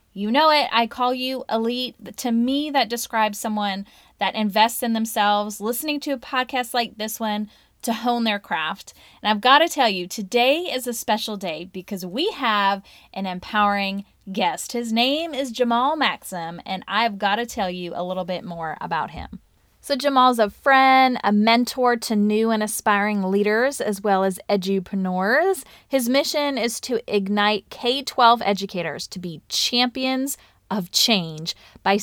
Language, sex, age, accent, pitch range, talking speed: English, female, 20-39, American, 200-245 Hz, 165 wpm